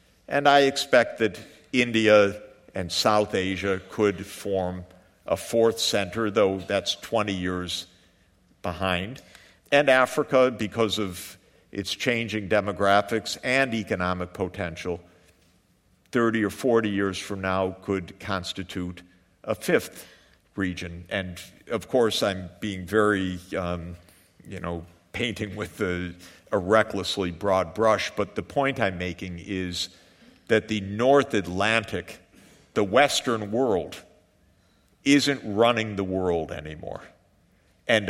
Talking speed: 115 wpm